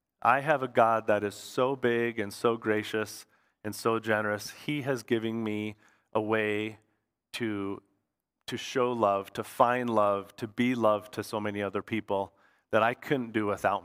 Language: English